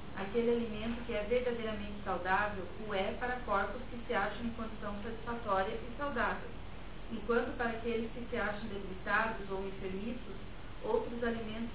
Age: 40-59